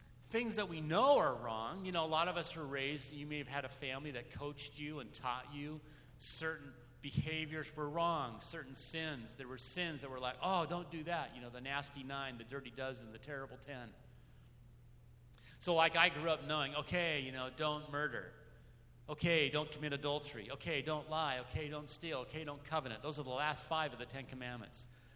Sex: male